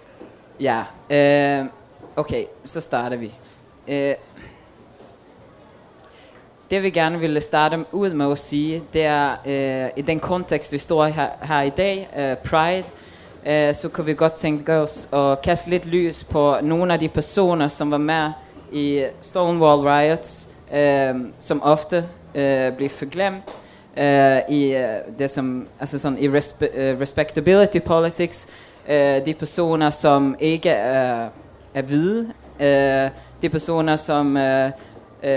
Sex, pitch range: female, 140-160 Hz